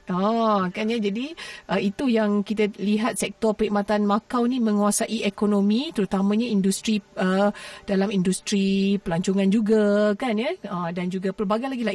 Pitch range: 190-215 Hz